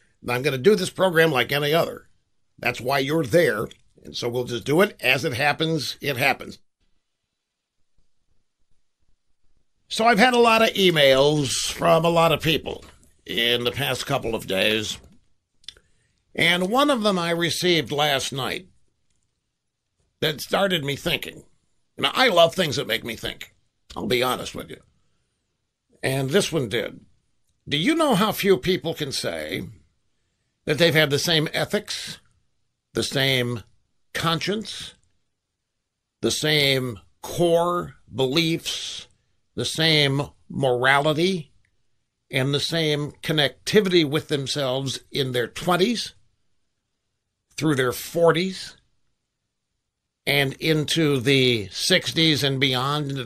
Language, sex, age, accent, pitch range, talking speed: English, male, 60-79, American, 125-170 Hz, 130 wpm